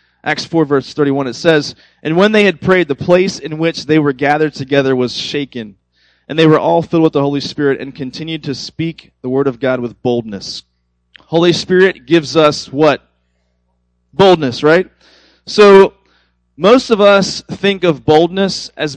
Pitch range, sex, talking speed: 130-175 Hz, male, 175 wpm